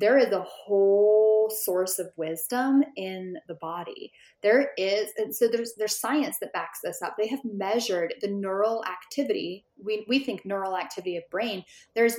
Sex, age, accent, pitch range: female, 10-29, American, 185-220 Hz